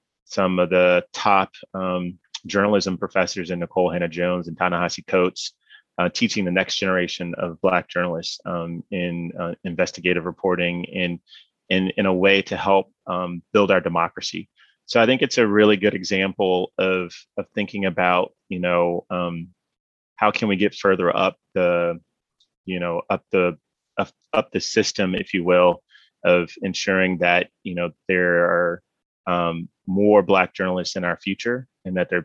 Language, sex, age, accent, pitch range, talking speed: English, male, 30-49, American, 90-100 Hz, 160 wpm